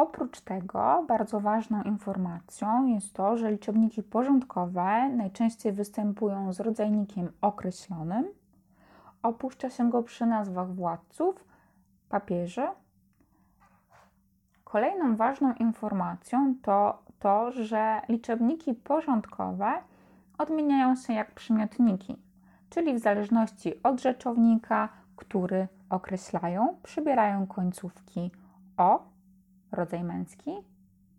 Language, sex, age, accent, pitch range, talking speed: Polish, female, 20-39, native, 185-225 Hz, 90 wpm